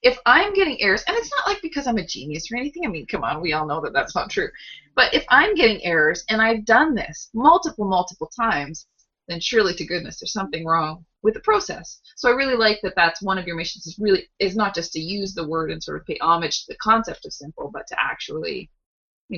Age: 20-39